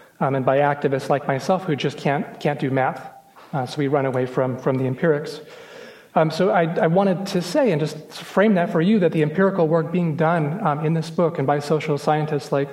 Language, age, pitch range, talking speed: English, 30-49, 140-170 Hz, 230 wpm